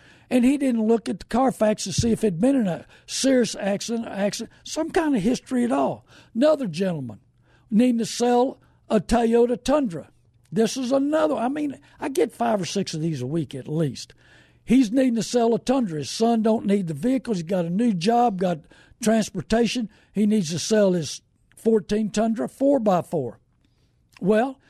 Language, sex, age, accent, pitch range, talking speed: English, male, 60-79, American, 185-235 Hz, 190 wpm